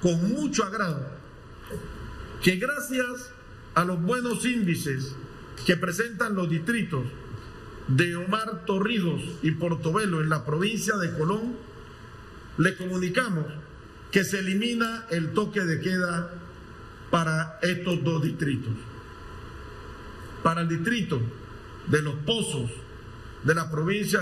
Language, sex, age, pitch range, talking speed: Spanish, male, 50-69, 130-200 Hz, 110 wpm